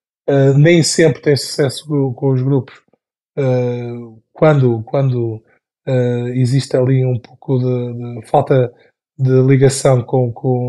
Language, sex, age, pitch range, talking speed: Portuguese, male, 20-39, 125-150 Hz, 125 wpm